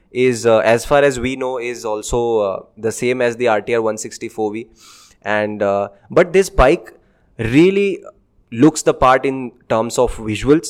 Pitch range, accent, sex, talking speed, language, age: 110-140 Hz, Indian, male, 165 wpm, English, 20-39